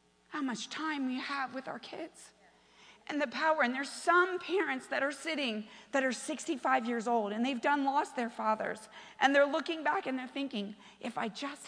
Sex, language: female, English